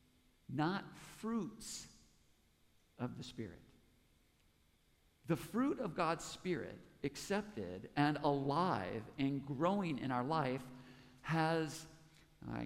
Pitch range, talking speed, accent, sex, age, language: 140-200 Hz, 95 wpm, American, male, 50-69, English